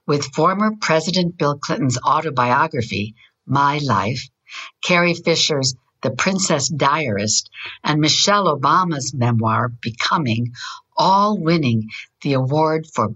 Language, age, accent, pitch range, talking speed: English, 60-79, American, 125-175 Hz, 105 wpm